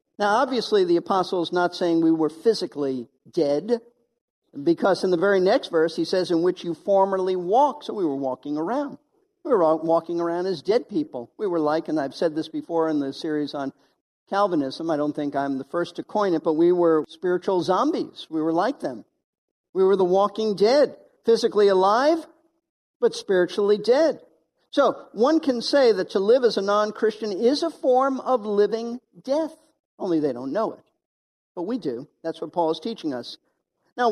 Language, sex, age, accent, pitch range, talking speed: English, male, 50-69, American, 165-250 Hz, 190 wpm